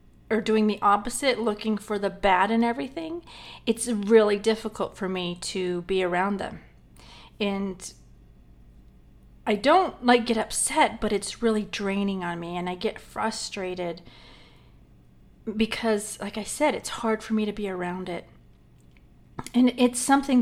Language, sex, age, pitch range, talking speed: English, female, 40-59, 185-230 Hz, 145 wpm